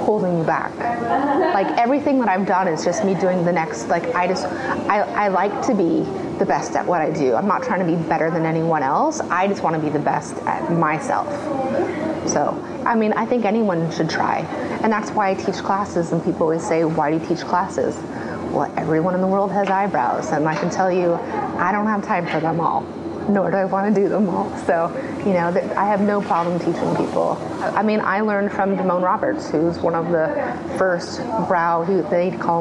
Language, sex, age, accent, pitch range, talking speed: English, female, 30-49, American, 165-195 Hz, 225 wpm